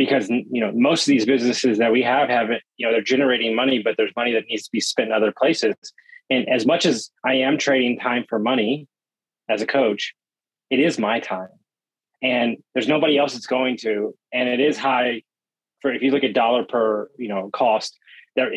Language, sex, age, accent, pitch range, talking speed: English, male, 30-49, American, 110-130 Hz, 215 wpm